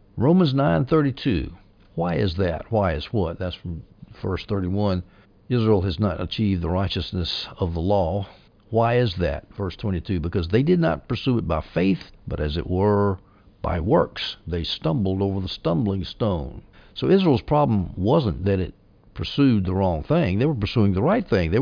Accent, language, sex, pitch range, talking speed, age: American, English, male, 95-115 Hz, 175 wpm, 60-79